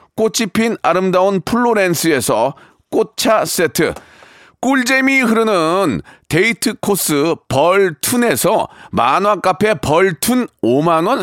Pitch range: 185-230 Hz